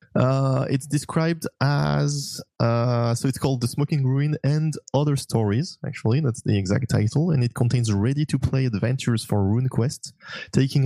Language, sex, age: English, male, 20-39